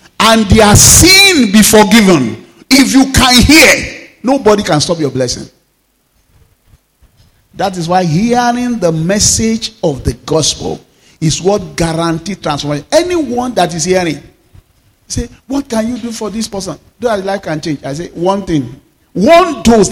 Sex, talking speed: male, 150 wpm